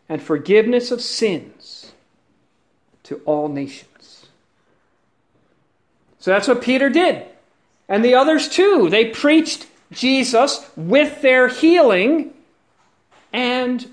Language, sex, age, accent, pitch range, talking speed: English, male, 50-69, American, 185-265 Hz, 100 wpm